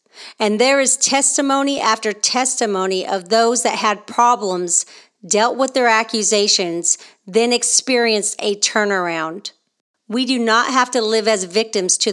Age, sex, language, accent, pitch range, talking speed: 40-59, female, English, American, 205-255 Hz, 140 wpm